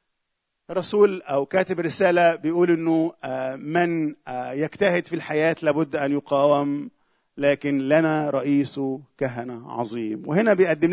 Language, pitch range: Arabic, 150-195 Hz